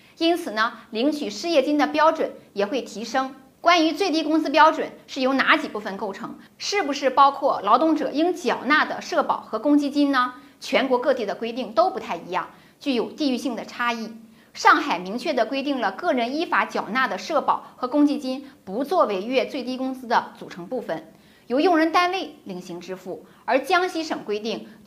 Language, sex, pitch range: Chinese, female, 230-305 Hz